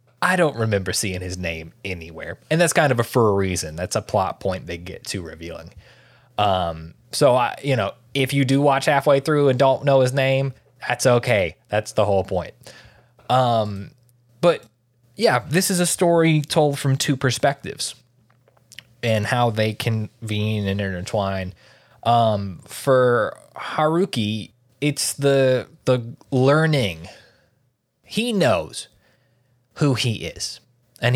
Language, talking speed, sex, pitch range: English, 145 wpm, male, 105-135 Hz